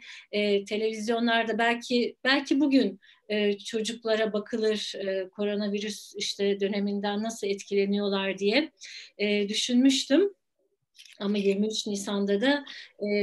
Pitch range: 205-250 Hz